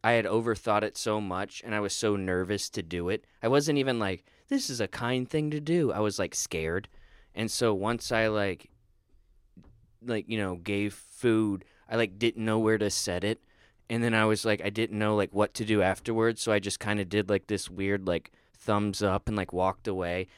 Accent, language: American, English